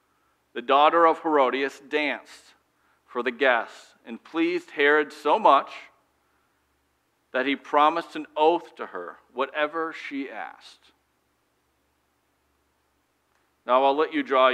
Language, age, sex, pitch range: English, 50-69, male, 110-150 Hz